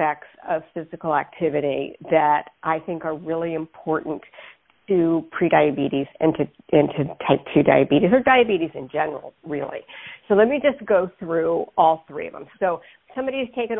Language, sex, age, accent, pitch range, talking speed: English, female, 50-69, American, 160-195 Hz, 160 wpm